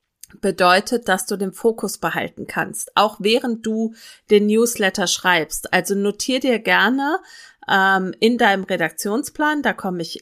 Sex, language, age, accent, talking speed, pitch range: female, German, 30-49, German, 140 wpm, 190-245 Hz